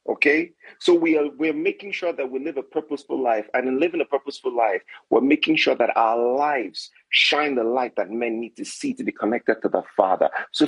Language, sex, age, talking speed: English, male, 40-59, 225 wpm